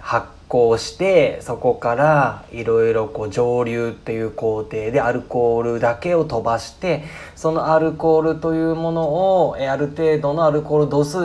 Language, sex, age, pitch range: Japanese, male, 20-39, 110-160 Hz